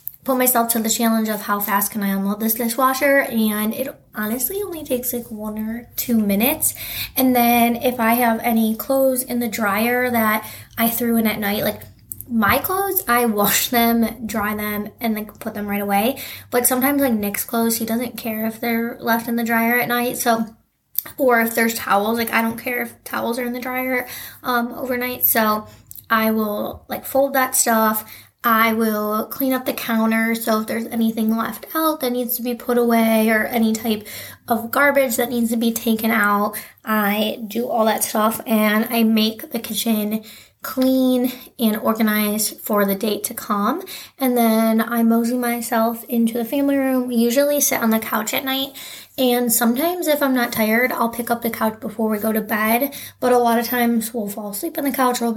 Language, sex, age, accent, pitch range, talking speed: English, female, 20-39, American, 220-250 Hz, 200 wpm